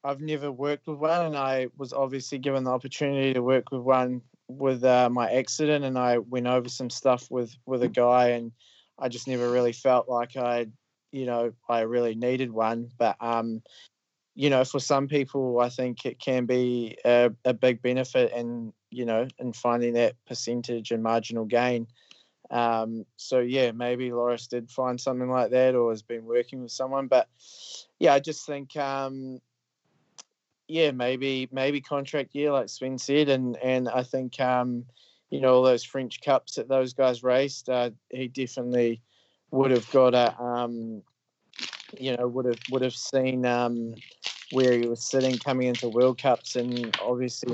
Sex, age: male, 20-39